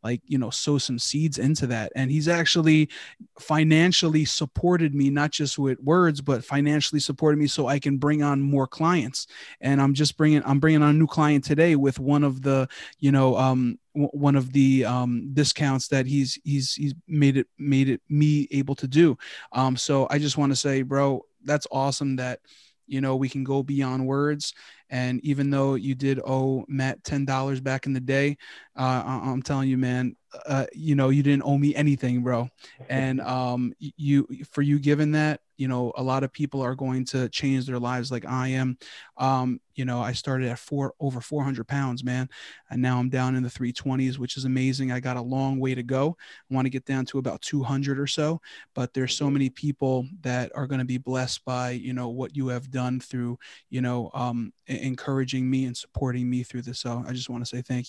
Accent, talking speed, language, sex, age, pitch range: American, 210 wpm, English, male, 20-39, 130-145 Hz